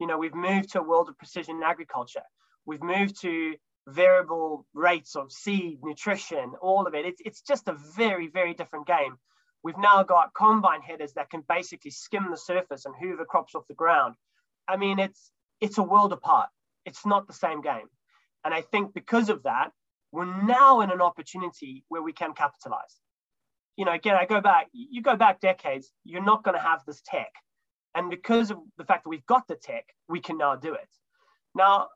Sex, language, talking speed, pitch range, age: male, English, 200 wpm, 165-210 Hz, 20-39